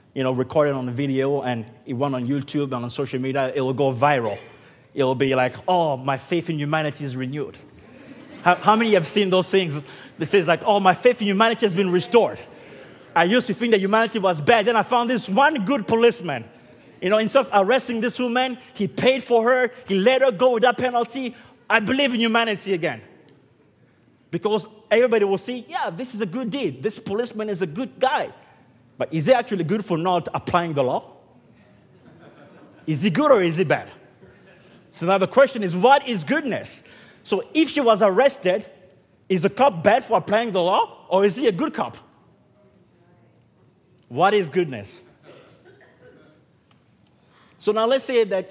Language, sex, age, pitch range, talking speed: English, male, 30-49, 155-230 Hz, 190 wpm